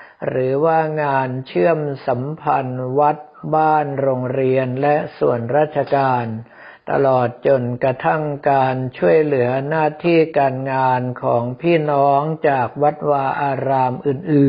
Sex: male